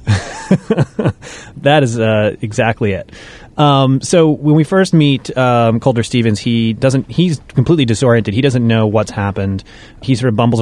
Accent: American